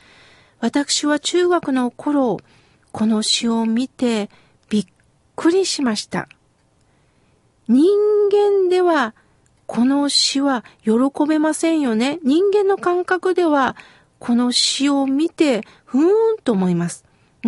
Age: 50-69